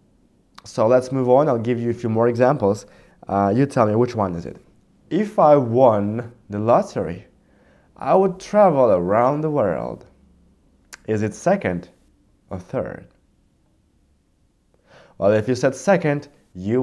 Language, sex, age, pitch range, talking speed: English, male, 20-39, 95-145 Hz, 145 wpm